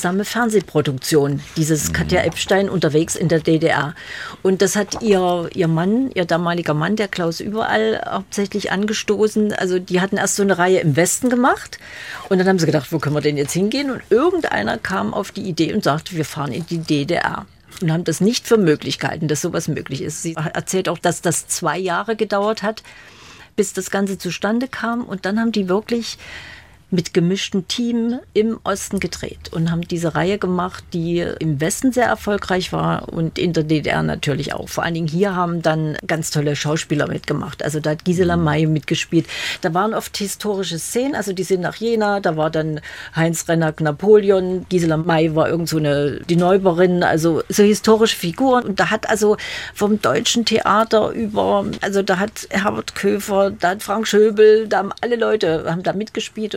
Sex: female